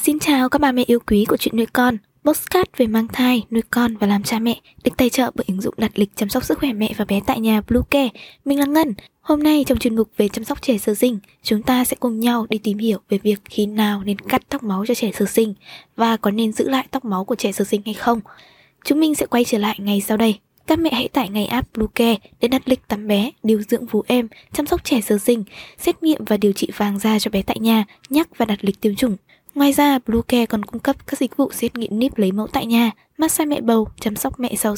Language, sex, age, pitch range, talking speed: Vietnamese, female, 20-39, 215-265 Hz, 275 wpm